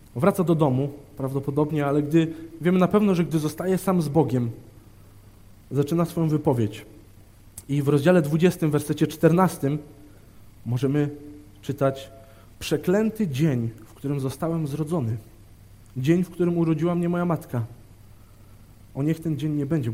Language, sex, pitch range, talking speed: Polish, male, 105-160 Hz, 135 wpm